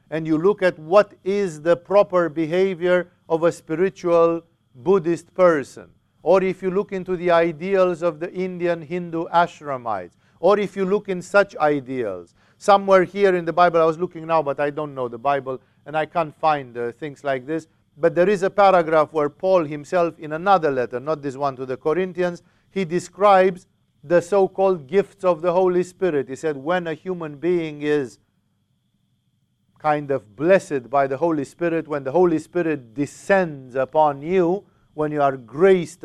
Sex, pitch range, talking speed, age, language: male, 140-180 Hz, 180 wpm, 50-69, English